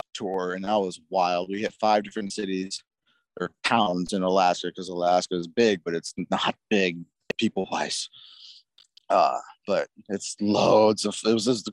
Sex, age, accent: male, 20-39, American